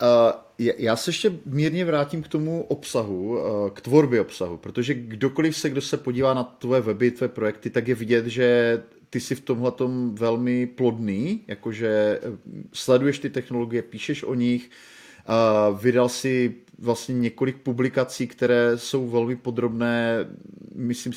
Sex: male